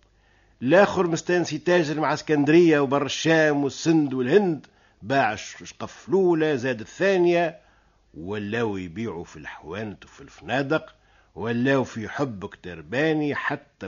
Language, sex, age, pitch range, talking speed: Arabic, male, 50-69, 100-155 Hz, 110 wpm